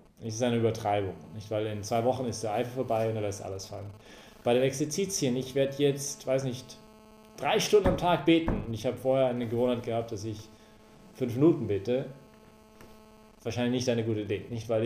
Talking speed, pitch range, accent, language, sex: 195 wpm, 110-125 Hz, German, English, male